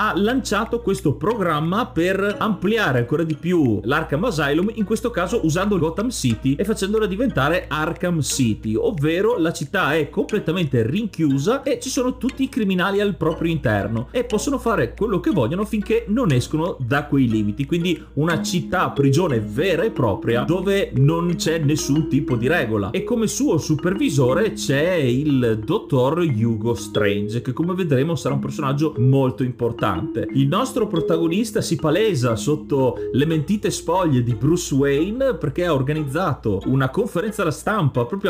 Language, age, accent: Italian, 30-49, native